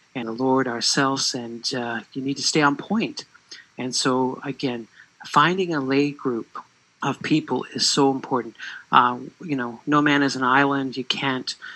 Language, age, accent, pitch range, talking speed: English, 40-59, American, 125-145 Hz, 175 wpm